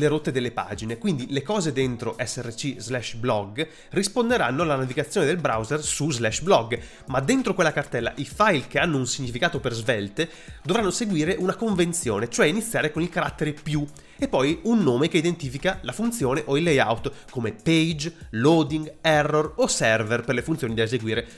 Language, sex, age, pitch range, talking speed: Italian, male, 30-49, 120-165 Hz, 175 wpm